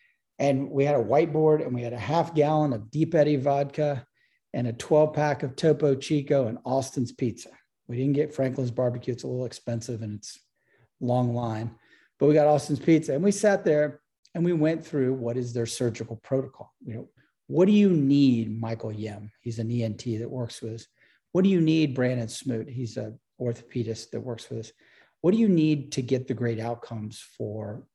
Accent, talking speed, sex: American, 200 wpm, male